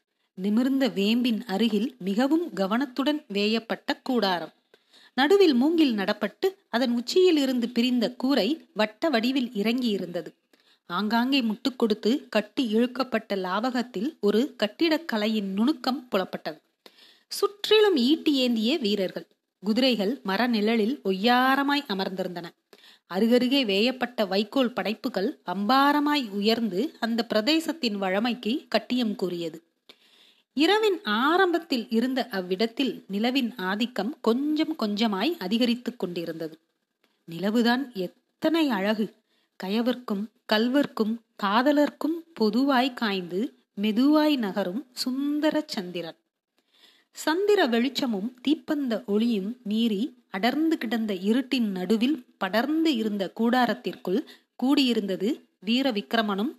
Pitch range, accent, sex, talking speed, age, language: 205-275 Hz, native, female, 85 wpm, 30-49, Tamil